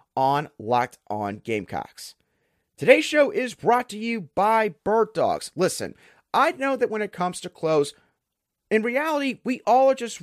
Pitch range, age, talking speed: 175-235 Hz, 30-49, 165 wpm